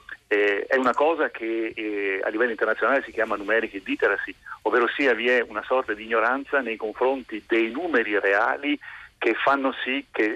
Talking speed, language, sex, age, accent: 175 wpm, Italian, male, 40-59, native